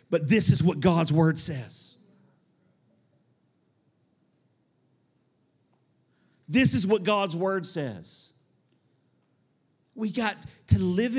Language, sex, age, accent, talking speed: English, male, 40-59, American, 90 wpm